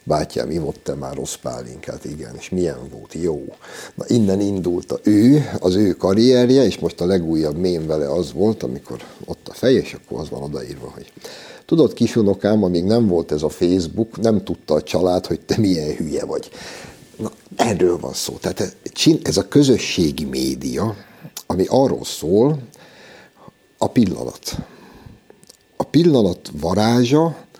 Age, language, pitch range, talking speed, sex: 60-79, Hungarian, 90-115 Hz, 150 wpm, male